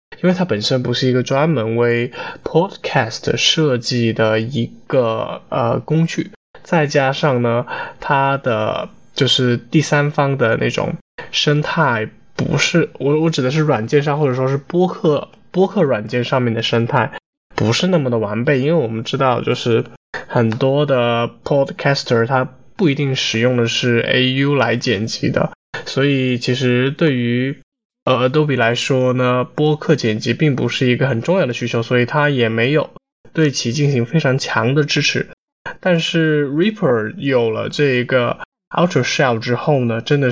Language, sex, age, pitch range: Chinese, male, 20-39, 120-150 Hz